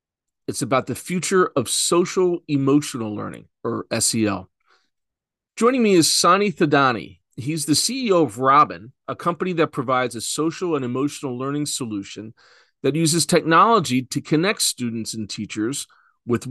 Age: 40-59